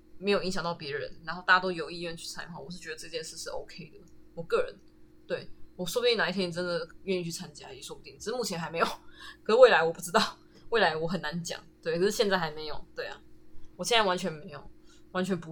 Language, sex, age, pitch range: Chinese, female, 20-39, 175-235 Hz